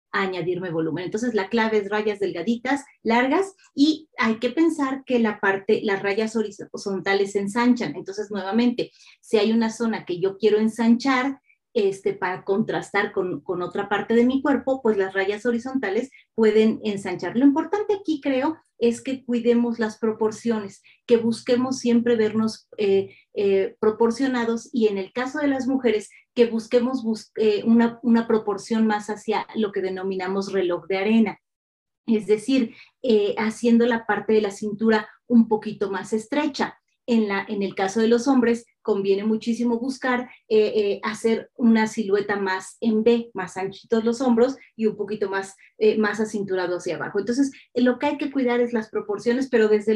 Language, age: Spanish, 30-49